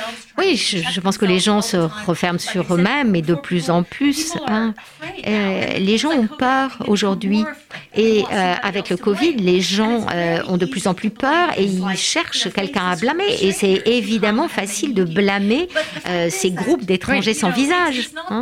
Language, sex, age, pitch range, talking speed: French, female, 50-69, 190-250 Hz, 175 wpm